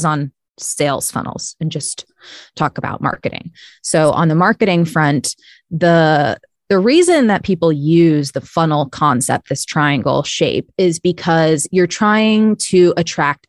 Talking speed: 140 wpm